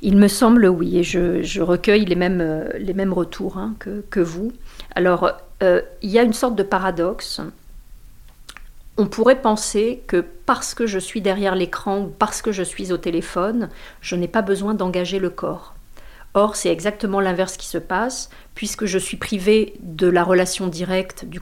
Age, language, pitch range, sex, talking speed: 40-59, French, 175-220 Hz, female, 185 wpm